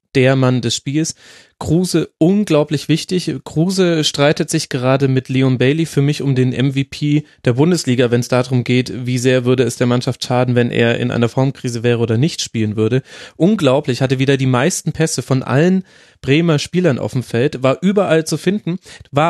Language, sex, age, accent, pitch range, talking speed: German, male, 30-49, German, 130-155 Hz, 185 wpm